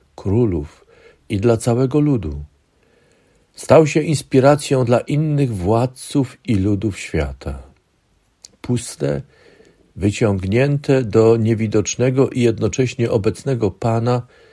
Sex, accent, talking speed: male, native, 90 wpm